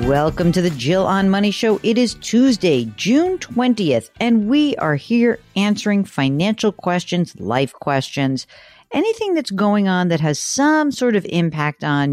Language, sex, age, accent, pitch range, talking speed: English, female, 50-69, American, 145-210 Hz, 160 wpm